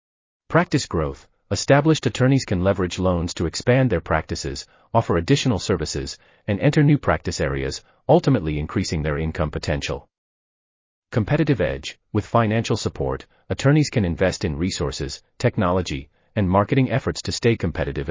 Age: 30-49